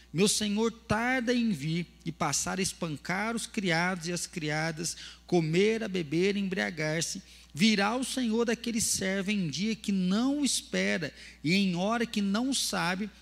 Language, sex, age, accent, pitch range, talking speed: Portuguese, male, 40-59, Brazilian, 170-225 Hz, 175 wpm